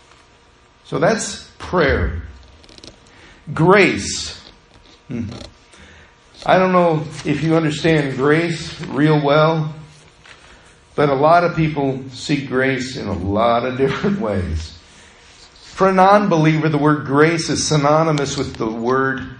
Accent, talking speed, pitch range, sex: American, 115 wpm, 105-165 Hz, male